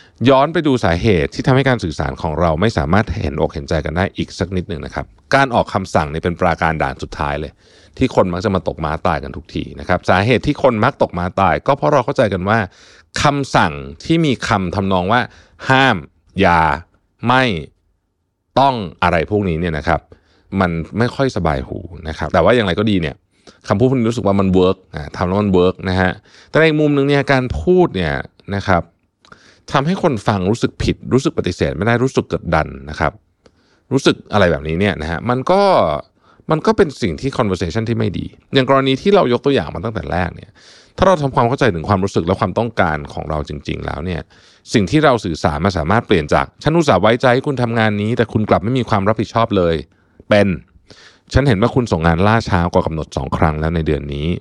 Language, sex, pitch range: Thai, male, 85-120 Hz